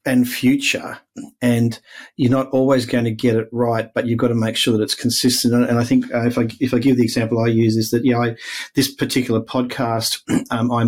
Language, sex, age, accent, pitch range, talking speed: English, male, 40-59, Australian, 110-125 Hz, 235 wpm